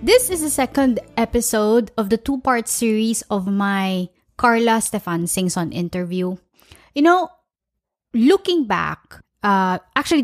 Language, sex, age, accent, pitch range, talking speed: English, female, 20-39, Filipino, 195-240 Hz, 125 wpm